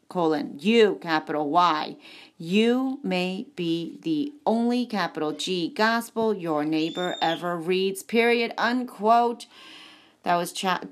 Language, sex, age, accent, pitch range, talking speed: English, female, 40-59, American, 175-230 Hz, 115 wpm